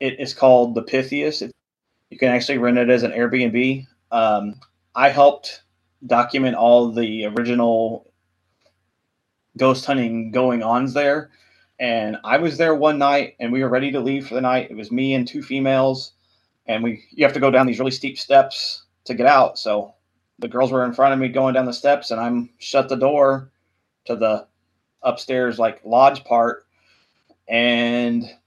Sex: male